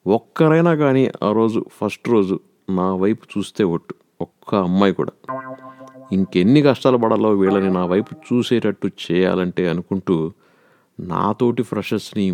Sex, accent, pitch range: male, native, 95-120 Hz